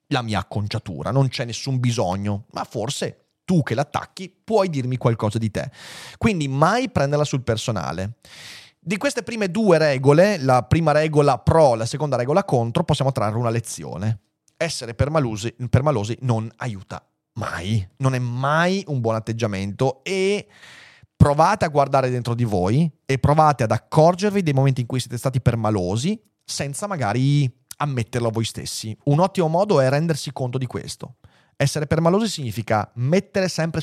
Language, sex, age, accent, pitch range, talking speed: Italian, male, 30-49, native, 115-160 Hz, 160 wpm